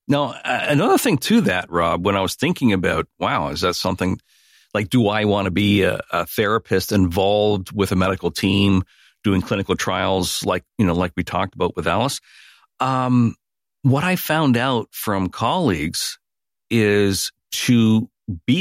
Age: 50-69